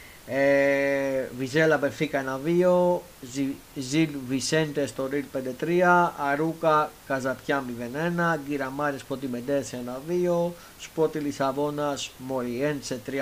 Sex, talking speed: male, 85 wpm